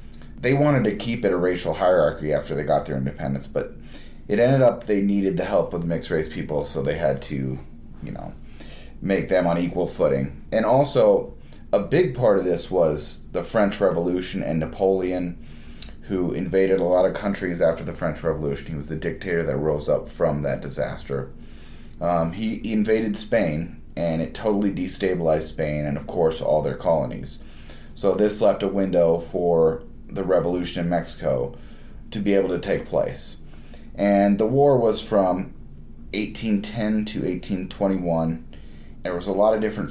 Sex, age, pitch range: male, 30-49, 75-100 Hz